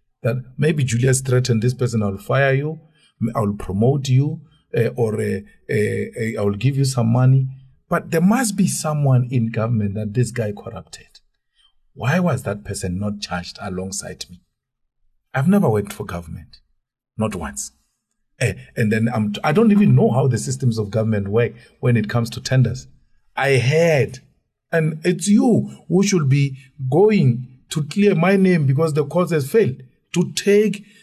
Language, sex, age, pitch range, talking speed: English, male, 50-69, 110-155 Hz, 165 wpm